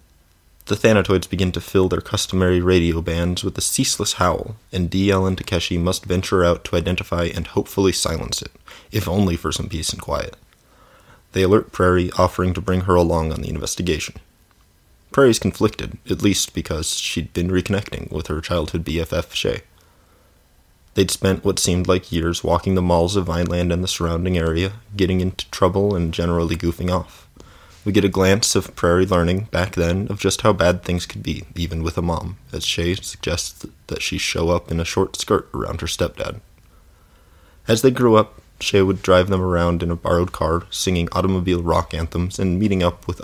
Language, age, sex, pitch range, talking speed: English, 20-39, male, 85-95 Hz, 185 wpm